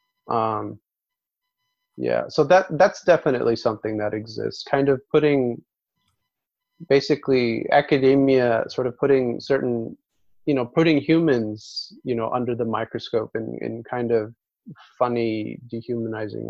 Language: English